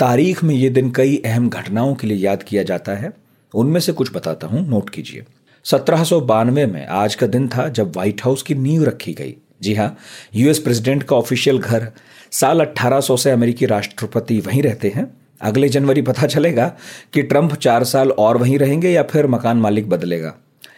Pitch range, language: 110-145 Hz, Hindi